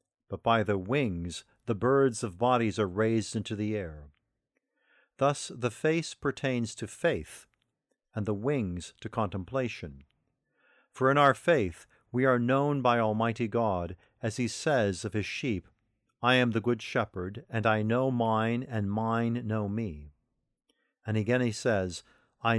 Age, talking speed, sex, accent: 50-69, 155 wpm, male, American